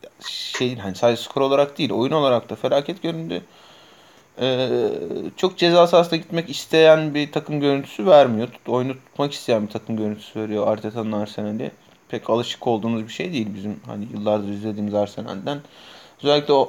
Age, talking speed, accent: 30-49, 155 wpm, native